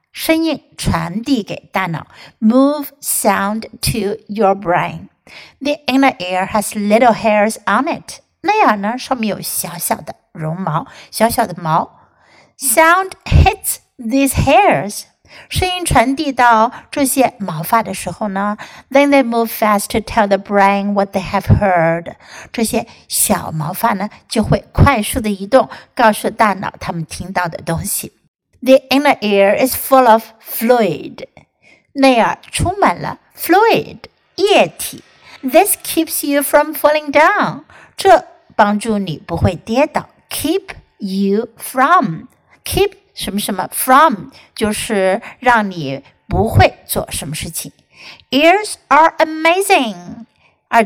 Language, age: Chinese, 60-79